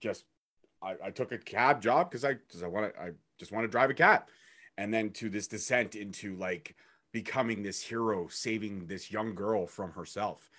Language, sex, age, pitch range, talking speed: English, male, 30-49, 105-120 Hz, 200 wpm